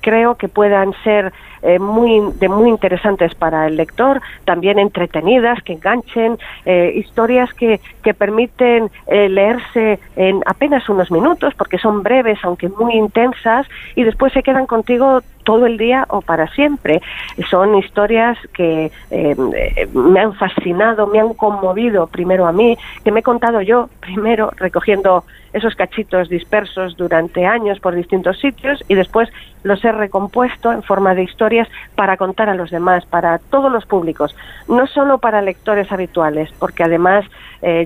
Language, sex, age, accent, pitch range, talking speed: Spanish, female, 40-59, Spanish, 185-230 Hz, 155 wpm